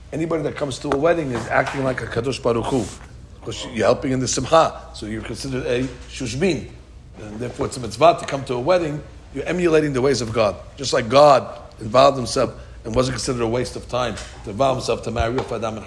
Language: English